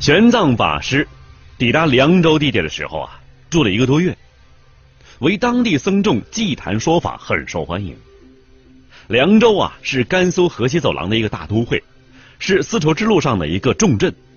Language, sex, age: Chinese, male, 30-49